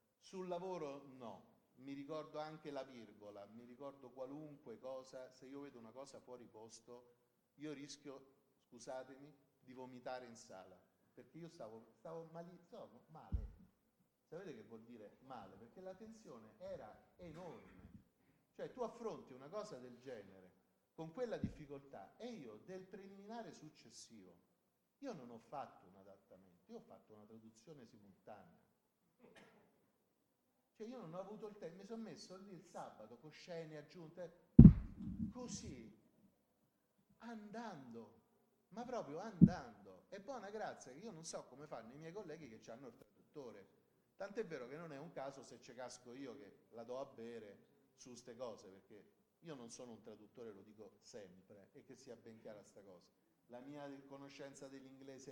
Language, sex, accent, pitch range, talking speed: Italian, male, native, 120-185 Hz, 155 wpm